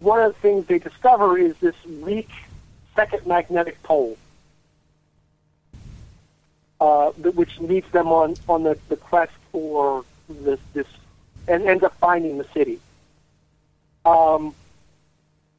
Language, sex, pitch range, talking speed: English, male, 150-190 Hz, 115 wpm